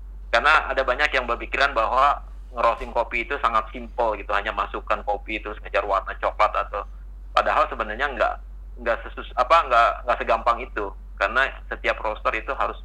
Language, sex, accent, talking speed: Indonesian, male, native, 165 wpm